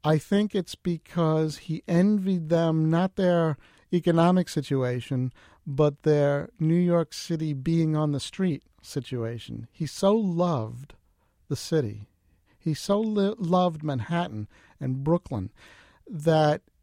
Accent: American